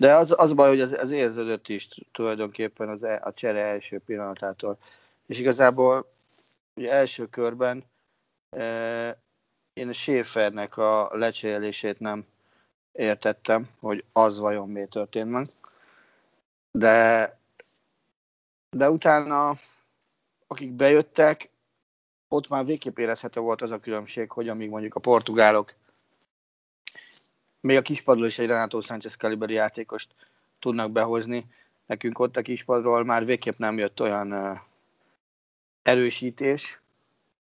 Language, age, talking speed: Hungarian, 30-49, 120 wpm